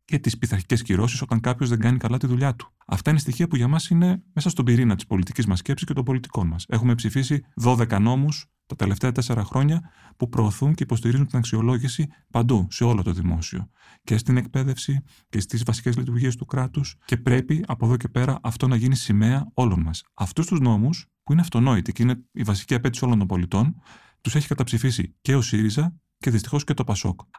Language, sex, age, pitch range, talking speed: Greek, male, 30-49, 100-130 Hz, 210 wpm